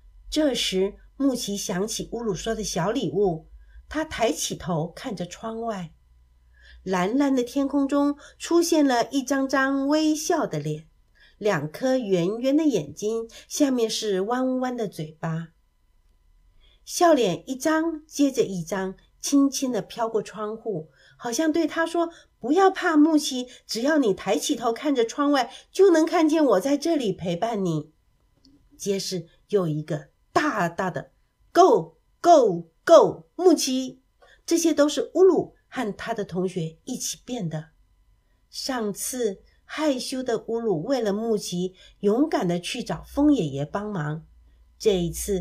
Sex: female